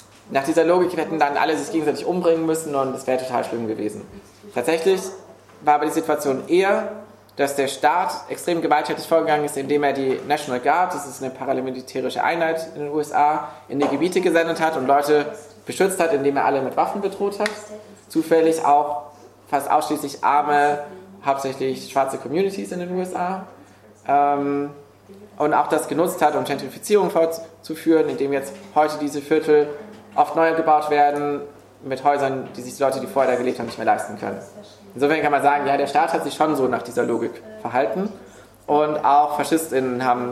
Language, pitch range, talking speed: German, 130-160 Hz, 180 wpm